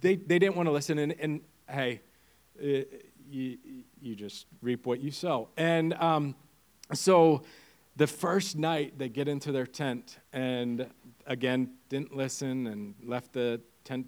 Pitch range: 125-165 Hz